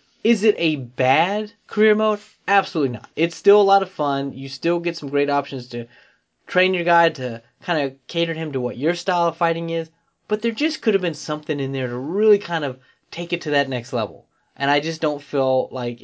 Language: English